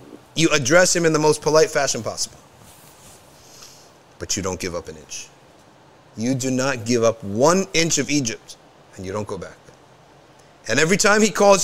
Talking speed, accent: 180 wpm, American